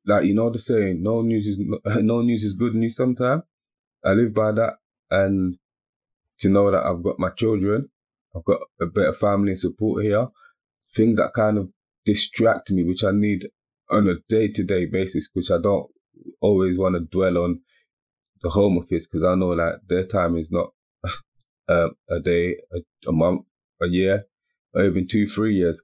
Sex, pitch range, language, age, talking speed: male, 90-105 Hz, English, 30-49, 185 wpm